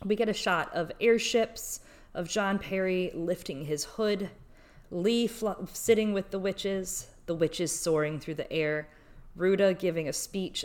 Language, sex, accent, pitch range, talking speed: English, female, American, 135-175 Hz, 160 wpm